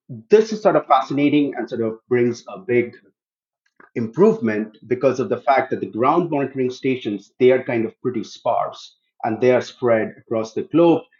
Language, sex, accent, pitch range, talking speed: English, male, Indian, 115-140 Hz, 180 wpm